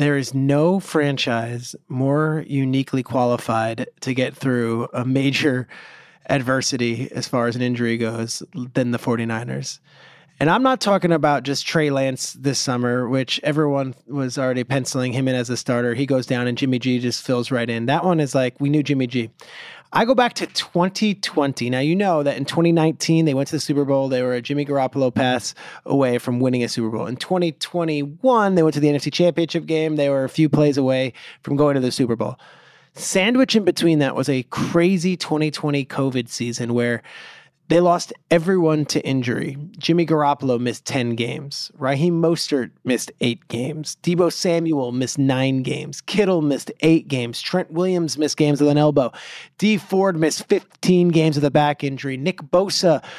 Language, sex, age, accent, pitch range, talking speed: English, male, 30-49, American, 130-175 Hz, 185 wpm